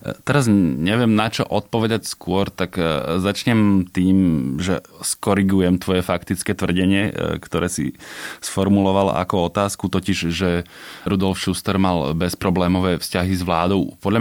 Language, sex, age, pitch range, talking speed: Slovak, male, 20-39, 85-100 Hz, 120 wpm